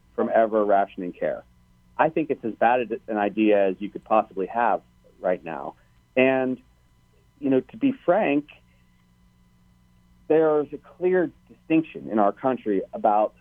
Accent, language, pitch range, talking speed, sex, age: American, English, 90-120 Hz, 145 wpm, male, 40-59